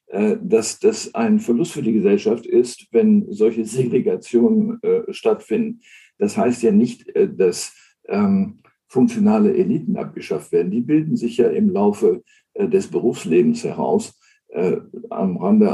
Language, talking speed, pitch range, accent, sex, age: German, 135 wpm, 205-230 Hz, German, male, 60-79